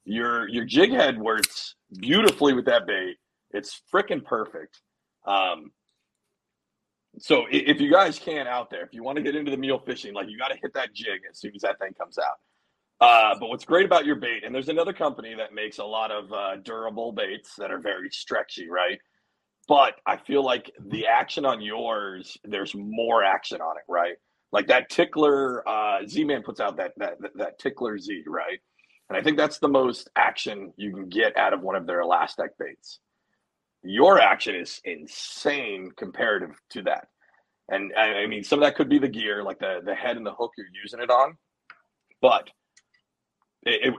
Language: English